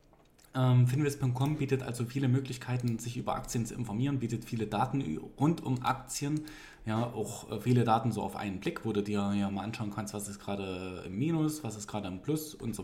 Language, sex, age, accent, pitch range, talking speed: German, male, 20-39, German, 105-130 Hz, 210 wpm